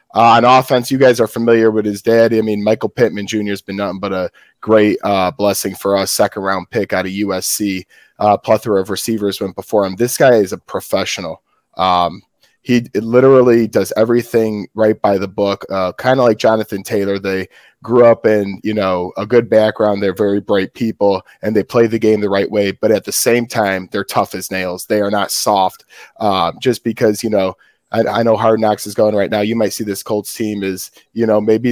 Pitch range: 95-110 Hz